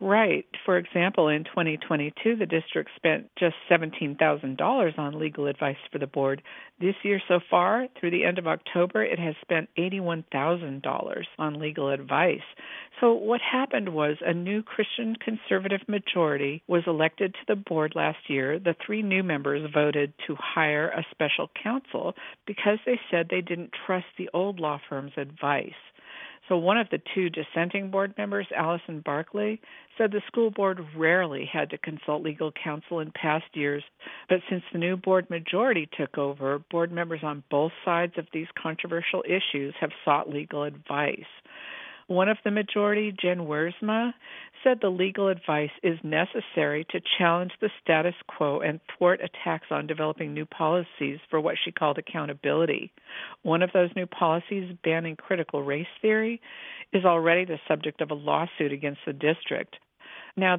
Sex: female